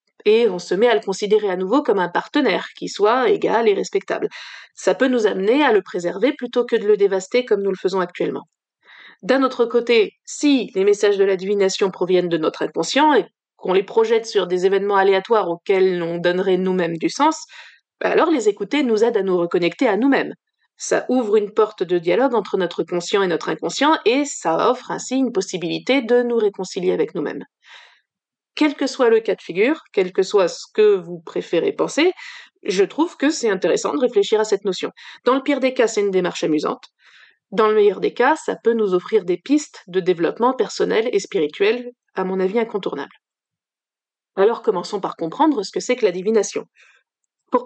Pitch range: 195-320 Hz